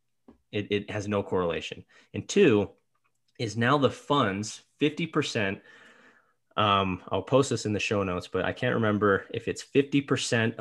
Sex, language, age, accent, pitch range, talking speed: male, English, 30-49, American, 95-125 Hz, 155 wpm